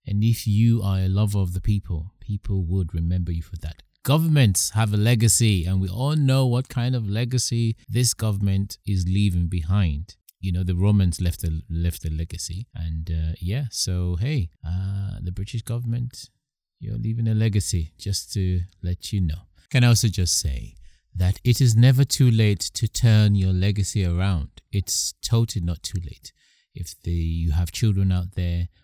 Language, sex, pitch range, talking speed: English, male, 85-110 Hz, 175 wpm